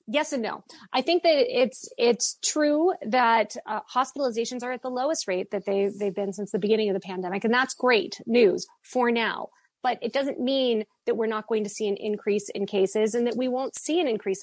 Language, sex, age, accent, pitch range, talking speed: English, female, 30-49, American, 200-250 Hz, 225 wpm